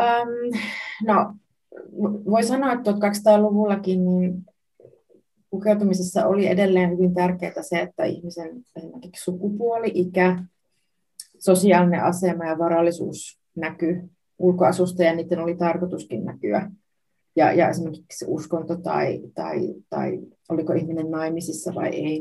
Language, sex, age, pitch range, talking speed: Finnish, female, 30-49, 165-185 Hz, 110 wpm